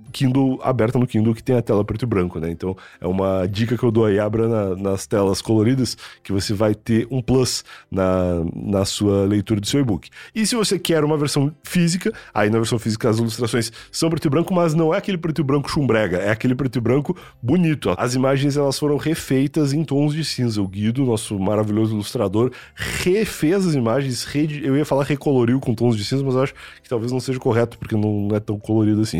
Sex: male